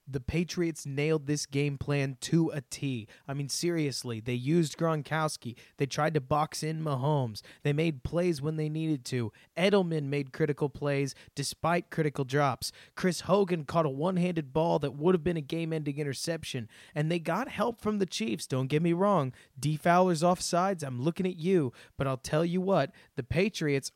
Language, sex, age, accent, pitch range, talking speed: English, male, 20-39, American, 130-160 Hz, 180 wpm